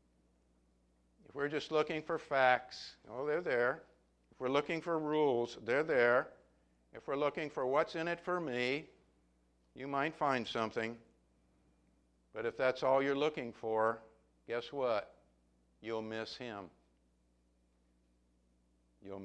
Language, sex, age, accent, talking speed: English, male, 60-79, American, 130 wpm